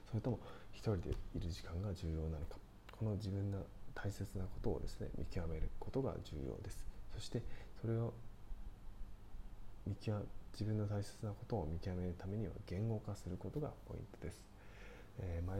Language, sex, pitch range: Japanese, male, 90-105 Hz